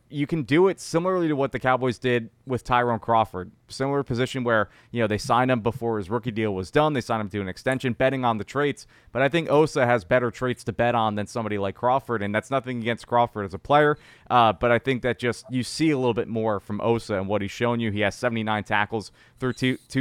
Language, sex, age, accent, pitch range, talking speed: English, male, 30-49, American, 110-125 Hz, 250 wpm